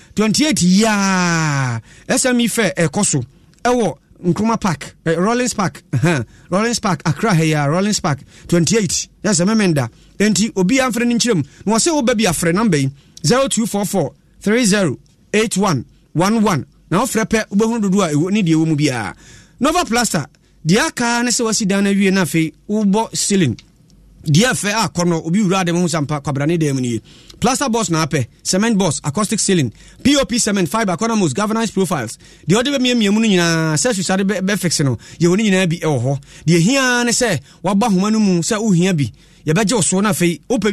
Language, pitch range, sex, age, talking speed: English, 160-220 Hz, male, 30-49, 165 wpm